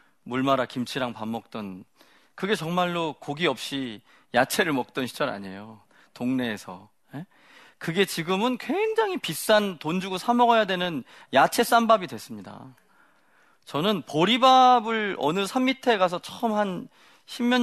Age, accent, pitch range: 40-59, native, 135-205 Hz